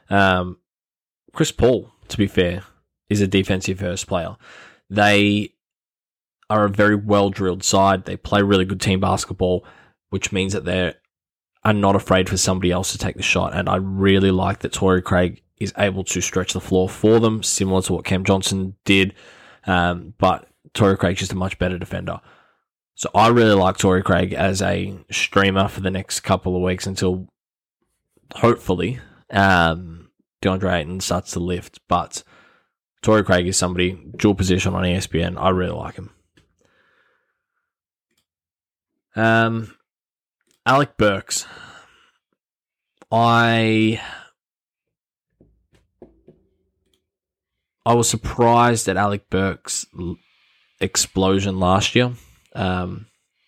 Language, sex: English, male